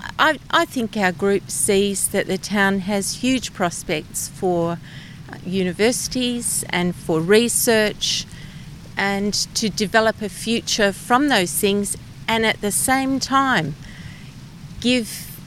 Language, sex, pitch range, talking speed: English, female, 170-225 Hz, 120 wpm